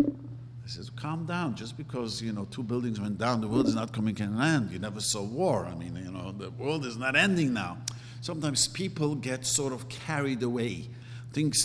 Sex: male